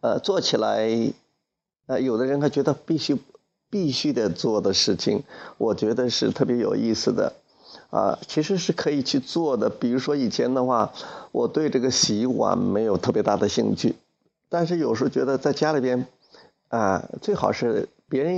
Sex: male